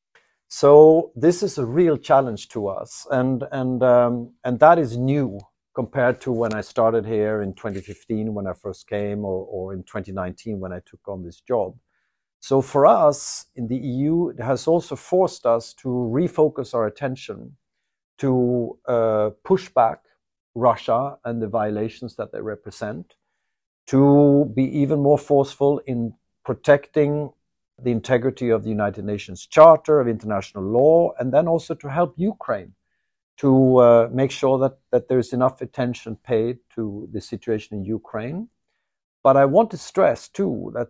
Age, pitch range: 50-69, 110-145 Hz